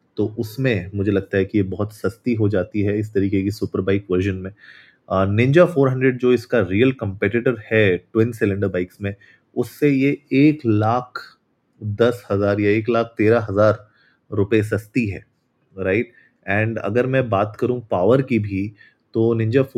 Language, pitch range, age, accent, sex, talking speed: Hindi, 105-125 Hz, 30-49, native, male, 175 wpm